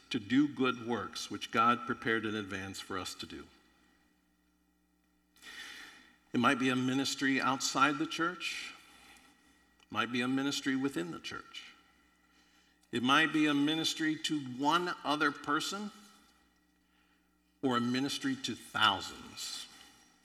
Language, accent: English, American